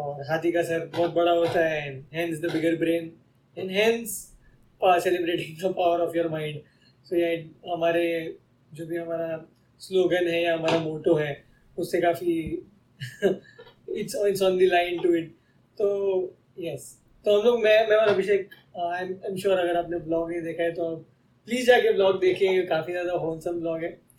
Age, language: 20-39, English